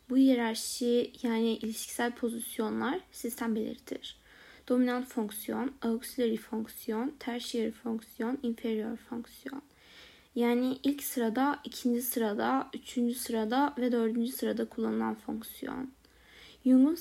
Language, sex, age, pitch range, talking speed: Turkish, female, 20-39, 225-260 Hz, 100 wpm